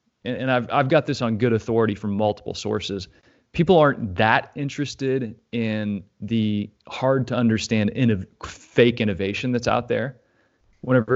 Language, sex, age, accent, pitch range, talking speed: English, male, 30-49, American, 105-130 Hz, 135 wpm